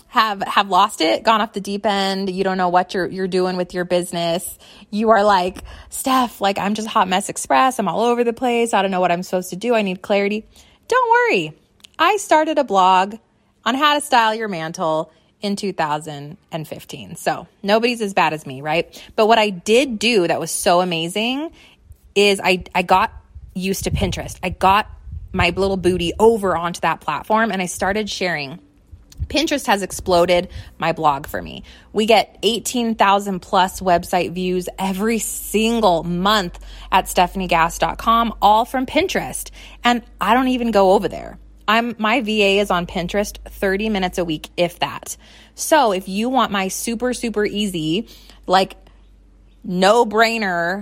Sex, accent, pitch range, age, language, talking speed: female, American, 175-220 Hz, 20-39, English, 170 wpm